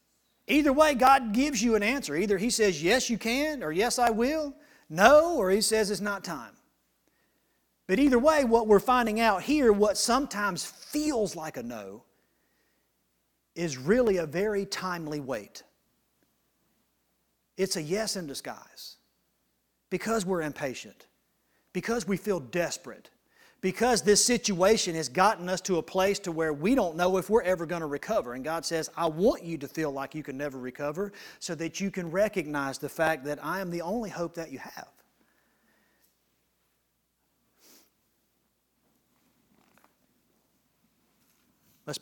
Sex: male